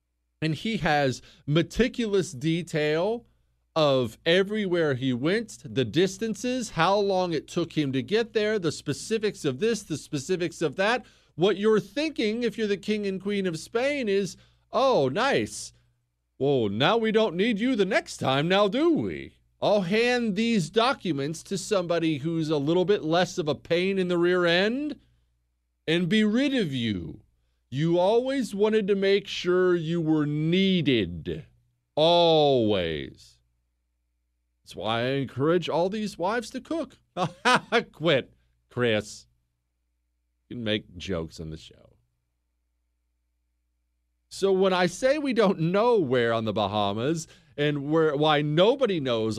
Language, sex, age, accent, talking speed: English, male, 40-59, American, 145 wpm